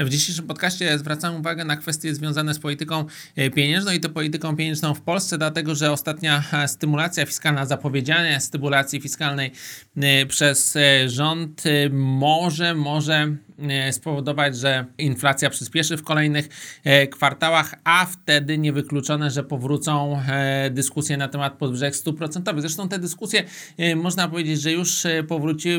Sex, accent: male, native